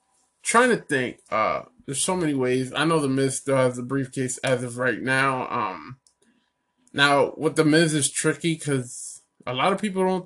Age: 20-39